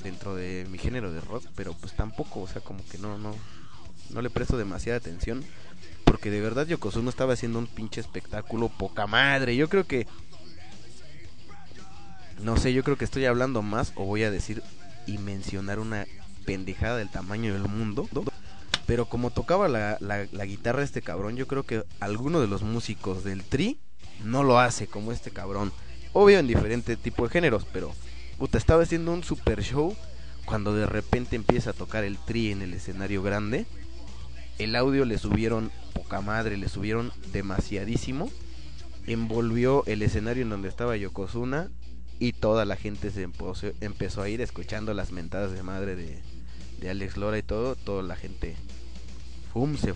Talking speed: 170 wpm